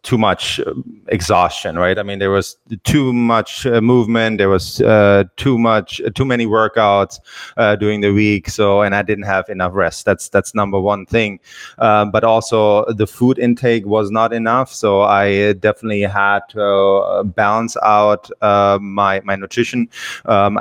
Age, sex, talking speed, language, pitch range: 20-39, male, 165 wpm, English, 105-115 Hz